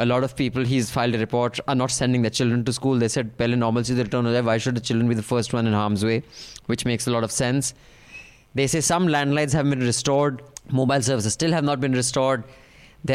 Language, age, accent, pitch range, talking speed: English, 20-39, Indian, 115-140 Hz, 235 wpm